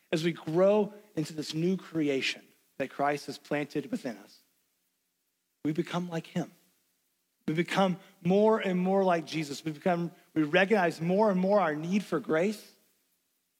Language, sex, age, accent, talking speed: English, male, 40-59, American, 155 wpm